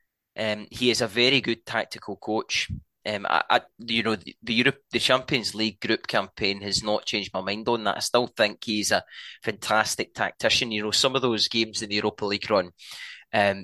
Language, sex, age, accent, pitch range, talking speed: English, male, 20-39, British, 105-120 Hz, 205 wpm